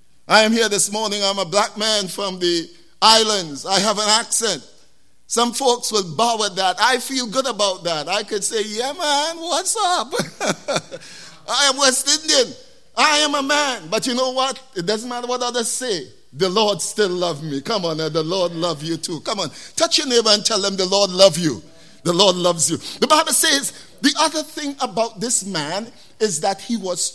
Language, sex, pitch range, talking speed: English, male, 190-245 Hz, 210 wpm